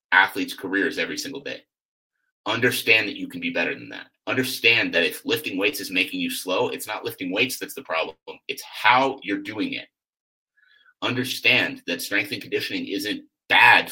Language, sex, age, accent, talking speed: English, male, 30-49, American, 175 wpm